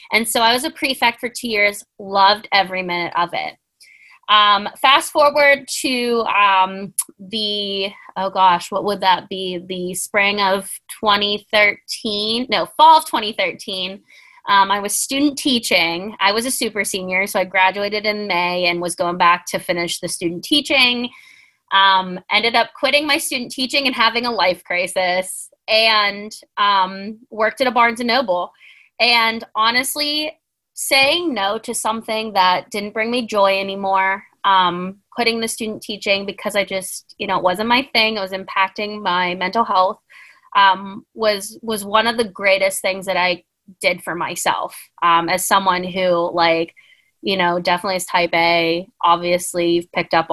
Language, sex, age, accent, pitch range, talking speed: English, female, 20-39, American, 185-235 Hz, 160 wpm